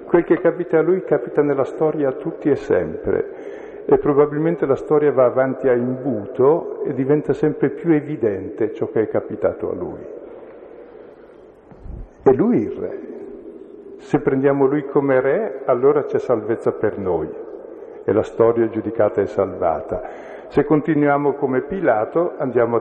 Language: Italian